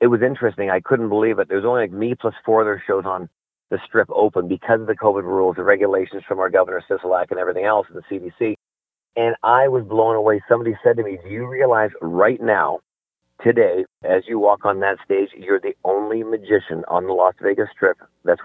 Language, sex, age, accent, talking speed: English, male, 40-59, American, 220 wpm